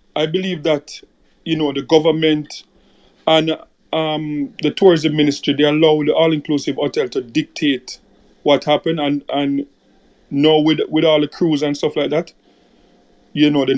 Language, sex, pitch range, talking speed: English, male, 140-160 Hz, 155 wpm